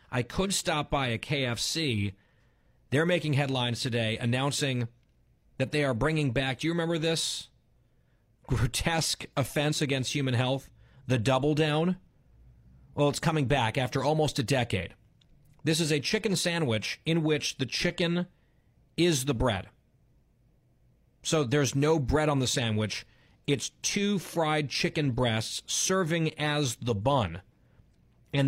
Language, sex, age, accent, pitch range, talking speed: English, male, 40-59, American, 115-150 Hz, 135 wpm